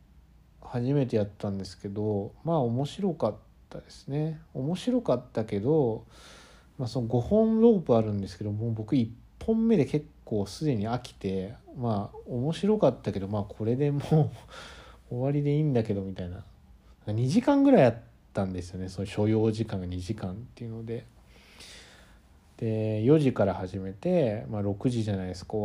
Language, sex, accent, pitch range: Japanese, male, native, 100-125 Hz